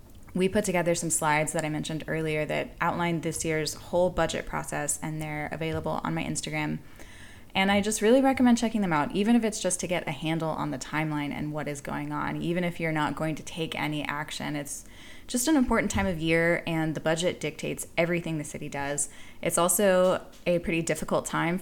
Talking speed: 210 wpm